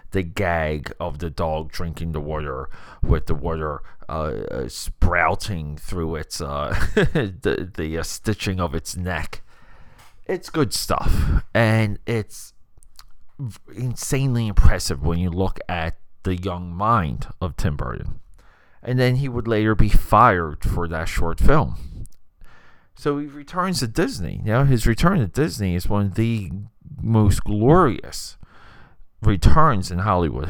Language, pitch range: English, 85-115 Hz